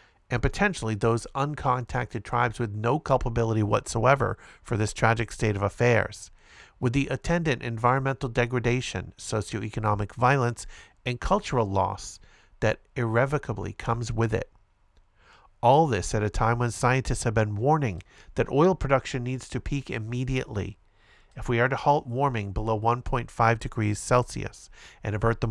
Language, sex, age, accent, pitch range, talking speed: English, male, 50-69, American, 105-125 Hz, 140 wpm